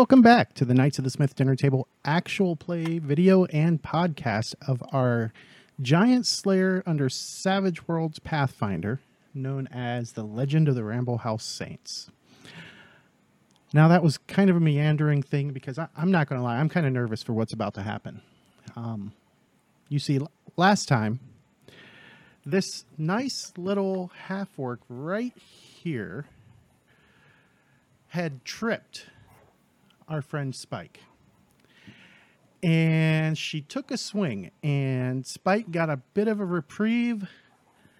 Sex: male